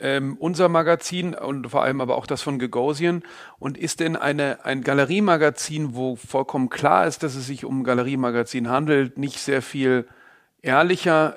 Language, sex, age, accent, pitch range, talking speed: German, male, 40-59, German, 125-145 Hz, 170 wpm